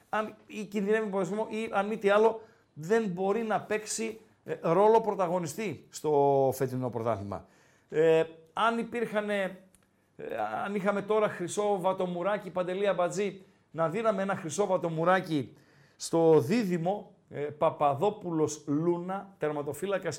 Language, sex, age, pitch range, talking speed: Greek, male, 50-69, 155-215 Hz, 120 wpm